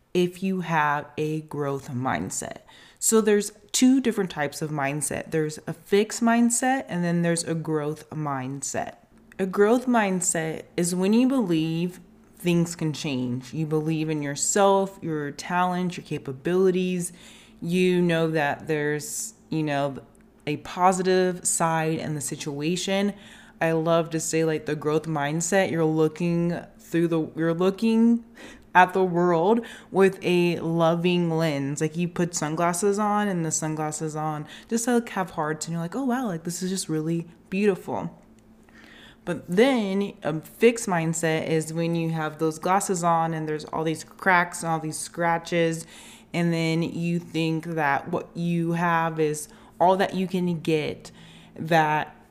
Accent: American